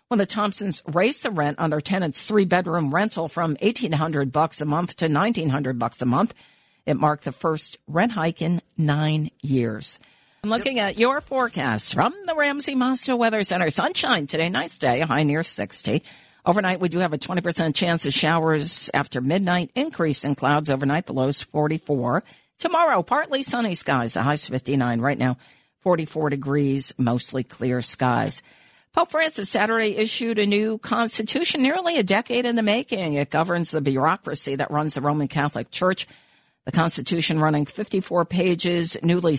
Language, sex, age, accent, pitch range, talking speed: English, female, 50-69, American, 145-205 Hz, 165 wpm